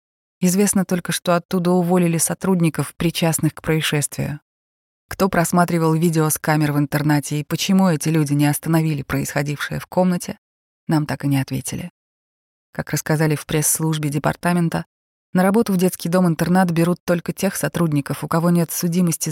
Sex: female